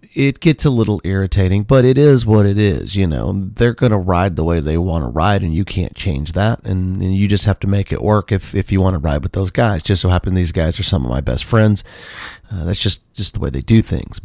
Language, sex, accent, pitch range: English, male, American, 95-110 Hz